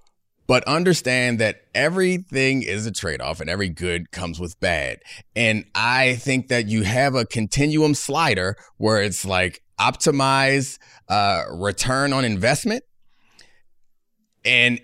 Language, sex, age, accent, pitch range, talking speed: English, male, 30-49, American, 110-140 Hz, 125 wpm